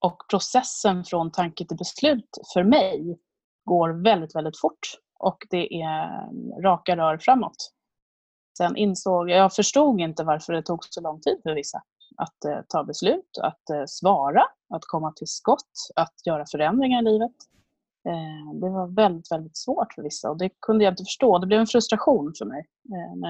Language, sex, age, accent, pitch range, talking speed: Swedish, female, 30-49, native, 165-220 Hz, 170 wpm